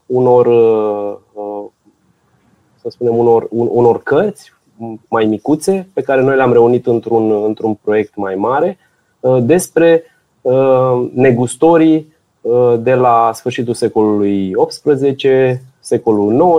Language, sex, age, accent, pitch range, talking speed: Romanian, male, 20-39, native, 115-140 Hz, 95 wpm